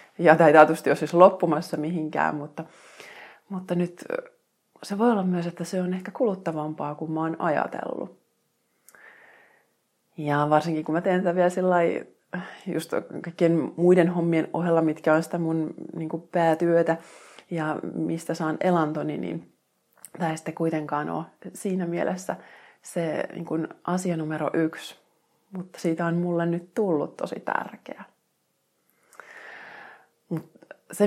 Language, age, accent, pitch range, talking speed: Finnish, 30-49, native, 155-175 Hz, 125 wpm